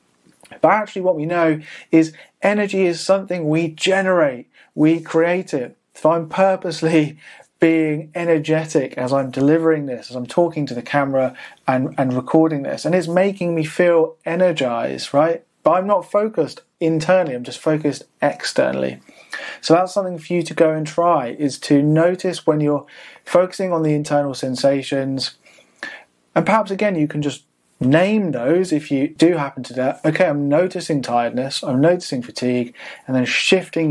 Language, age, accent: English, 30-49, British